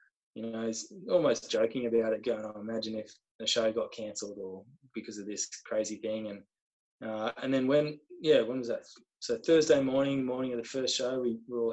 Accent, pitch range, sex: Australian, 115-130 Hz, male